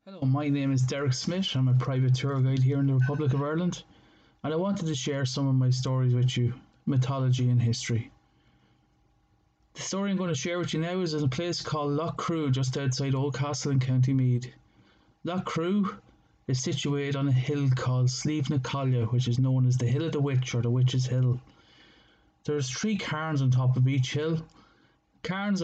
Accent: Irish